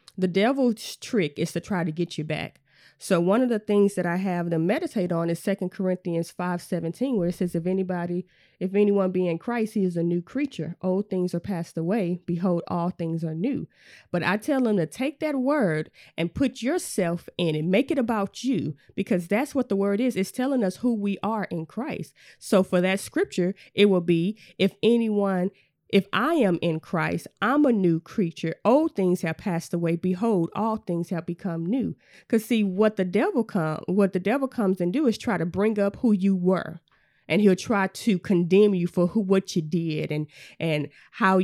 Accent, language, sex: American, English, female